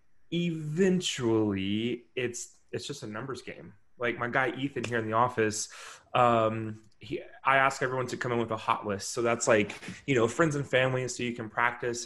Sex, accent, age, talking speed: male, American, 20-39, 195 wpm